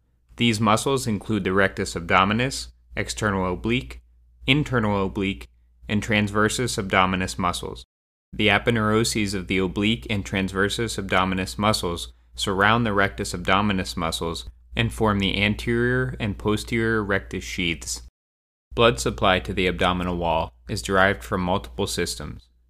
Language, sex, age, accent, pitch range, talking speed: English, male, 30-49, American, 90-105 Hz, 125 wpm